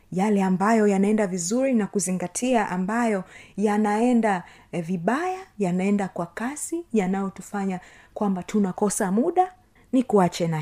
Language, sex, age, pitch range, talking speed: Swahili, female, 30-49, 185-240 Hz, 105 wpm